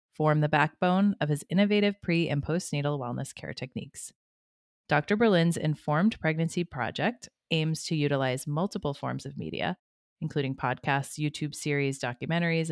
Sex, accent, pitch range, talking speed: female, American, 140-180 Hz, 135 wpm